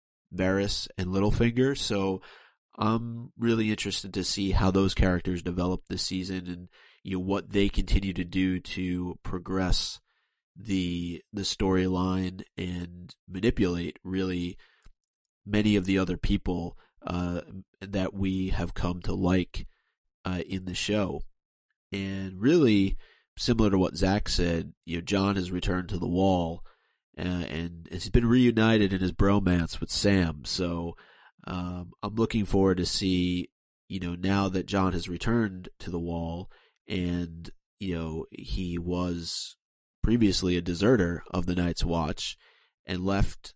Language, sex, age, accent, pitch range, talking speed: English, male, 30-49, American, 90-100 Hz, 140 wpm